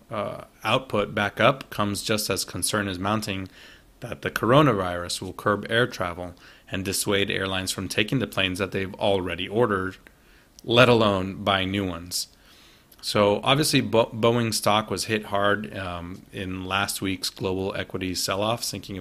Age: 30-49